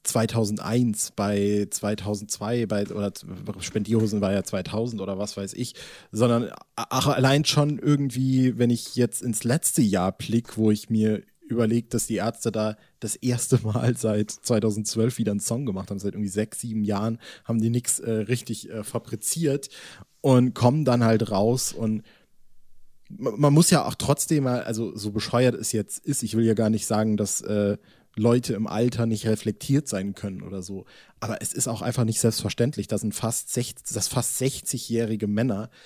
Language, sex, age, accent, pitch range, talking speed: German, male, 20-39, German, 105-130 Hz, 170 wpm